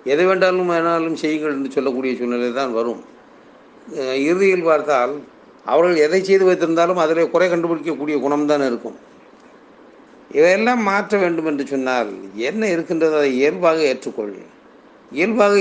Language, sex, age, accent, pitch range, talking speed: Tamil, male, 50-69, native, 130-175 Hz, 125 wpm